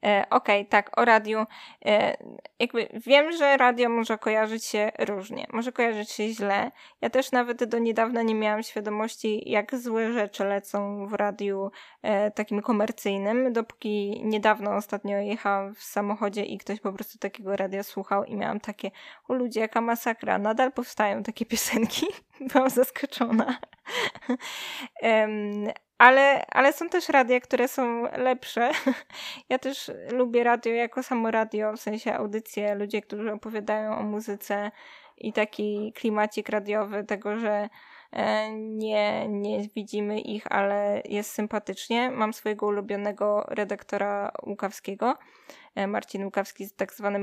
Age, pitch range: 20-39, 205-240 Hz